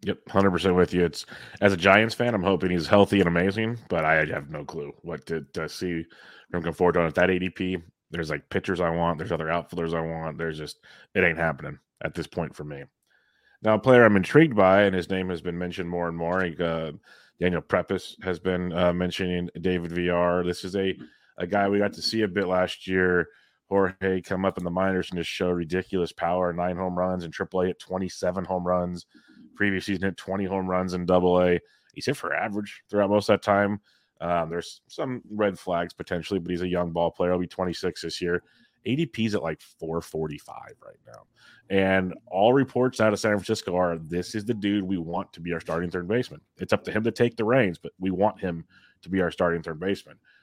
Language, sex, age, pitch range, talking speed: English, male, 30-49, 85-100 Hz, 220 wpm